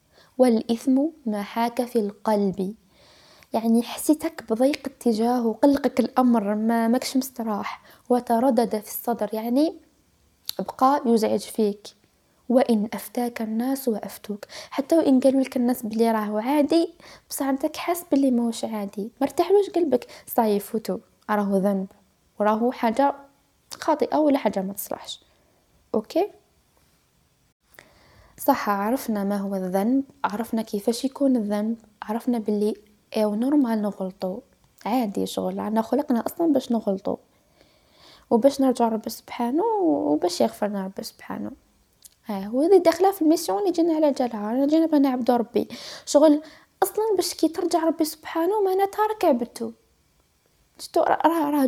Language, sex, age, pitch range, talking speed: Arabic, female, 10-29, 215-285 Hz, 120 wpm